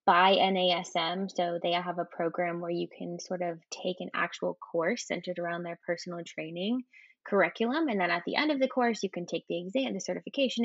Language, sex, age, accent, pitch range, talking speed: English, female, 10-29, American, 175-215 Hz, 210 wpm